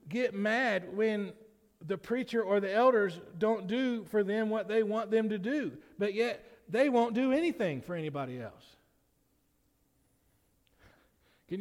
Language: English